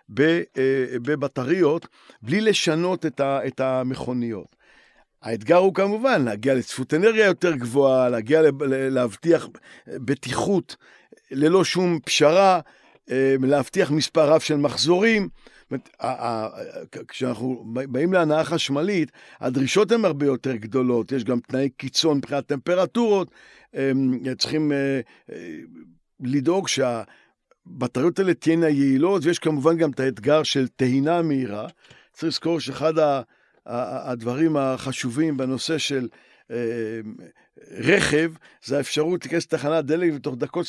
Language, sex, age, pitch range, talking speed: Hebrew, male, 50-69, 130-165 Hz, 105 wpm